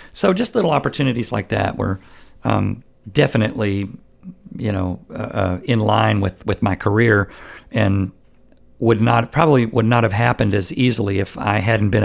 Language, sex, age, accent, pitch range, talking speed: English, male, 50-69, American, 105-125 Hz, 165 wpm